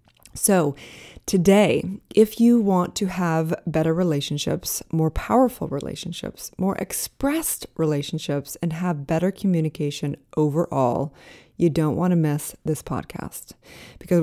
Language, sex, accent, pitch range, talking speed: English, female, American, 155-190 Hz, 120 wpm